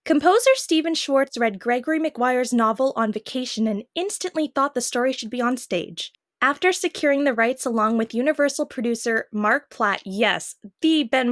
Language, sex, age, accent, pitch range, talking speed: English, female, 10-29, American, 235-305 Hz, 165 wpm